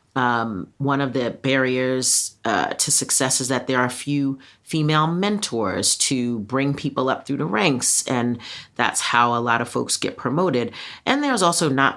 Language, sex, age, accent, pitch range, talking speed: English, female, 40-59, American, 120-145 Hz, 175 wpm